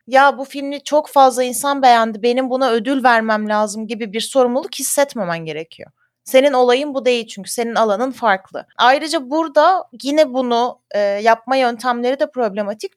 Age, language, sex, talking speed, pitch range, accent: 30-49, Turkish, female, 155 wpm, 220-270 Hz, native